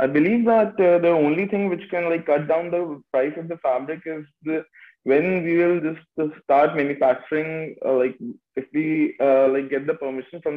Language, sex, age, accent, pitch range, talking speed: English, male, 20-39, Indian, 130-155 Hz, 205 wpm